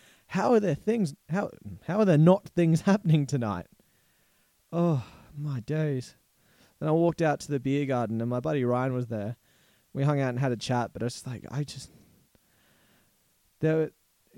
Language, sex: English, male